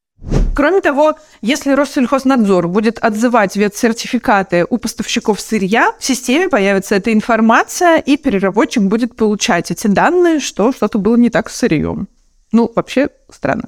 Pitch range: 200-255 Hz